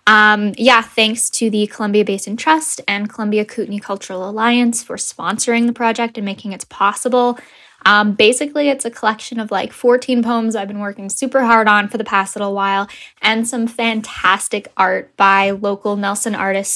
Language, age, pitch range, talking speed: English, 10-29, 205-250 Hz, 175 wpm